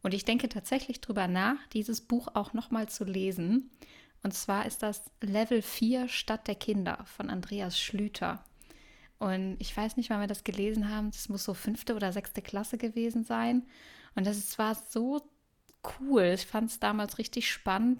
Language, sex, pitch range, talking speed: German, female, 195-230 Hz, 180 wpm